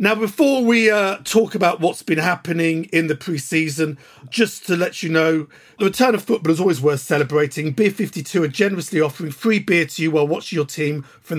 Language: English